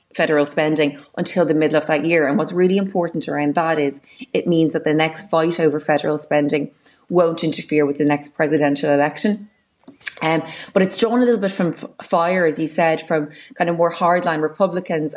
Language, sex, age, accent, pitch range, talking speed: English, female, 20-39, Irish, 150-175 Hz, 200 wpm